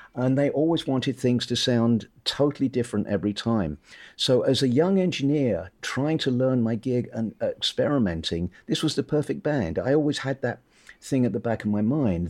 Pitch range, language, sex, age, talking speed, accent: 110-140 Hz, English, male, 50-69, 190 wpm, British